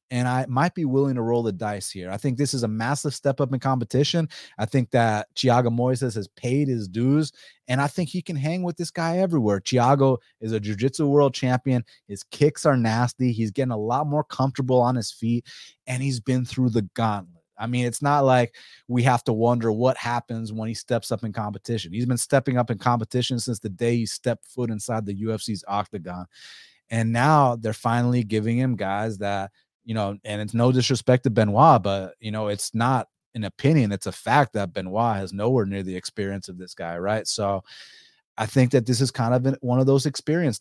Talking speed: 215 wpm